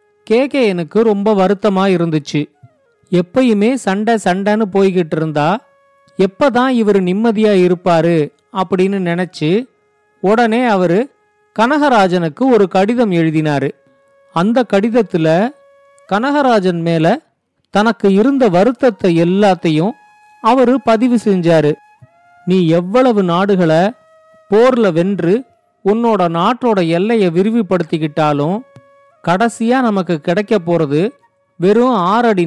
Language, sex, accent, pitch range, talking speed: Tamil, male, native, 175-235 Hz, 90 wpm